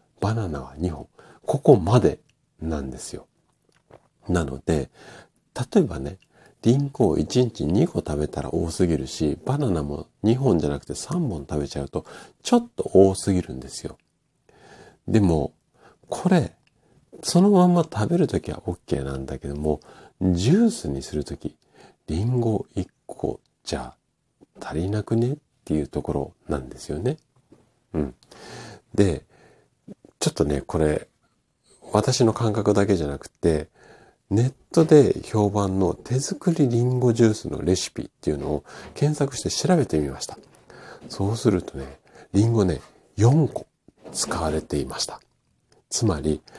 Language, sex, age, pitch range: Japanese, male, 50-69, 75-120 Hz